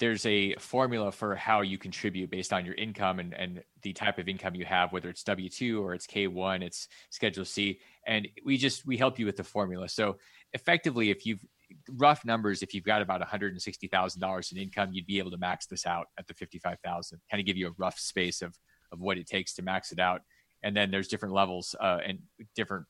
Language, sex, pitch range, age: English, male, 95-110 Hz, 30-49